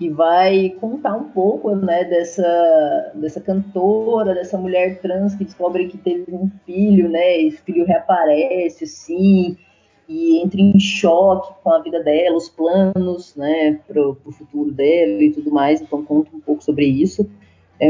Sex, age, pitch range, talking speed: female, 20-39, 155-200 Hz, 160 wpm